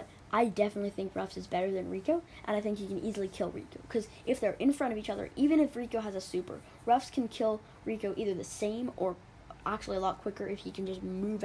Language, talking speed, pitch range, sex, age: English, 245 wpm, 185-225 Hz, female, 10-29